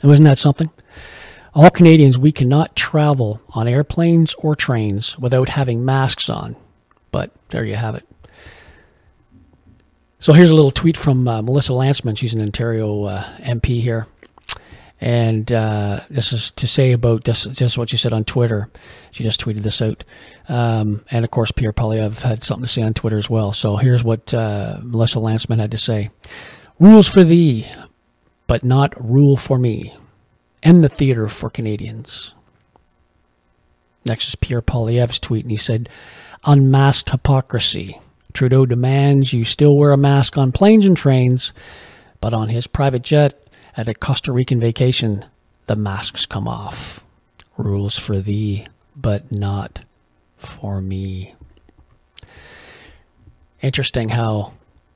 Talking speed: 150 wpm